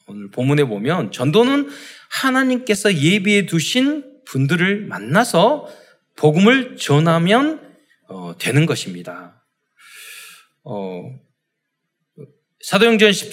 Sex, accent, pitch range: male, native, 150-235 Hz